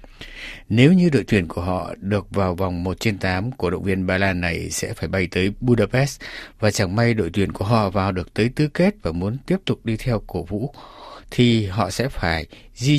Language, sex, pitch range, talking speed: Vietnamese, male, 95-120 Hz, 220 wpm